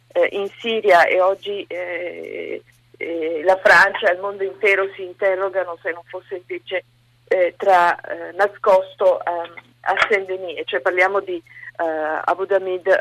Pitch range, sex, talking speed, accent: 180-220 Hz, female, 150 wpm, native